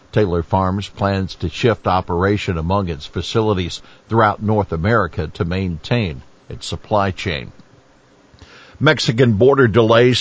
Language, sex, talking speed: English, male, 120 wpm